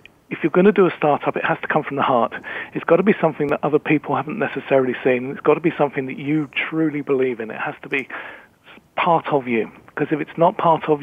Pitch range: 135-160 Hz